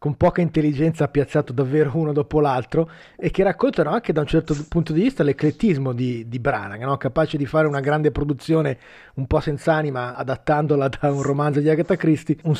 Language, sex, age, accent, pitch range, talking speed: Italian, male, 30-49, native, 130-160 Hz, 190 wpm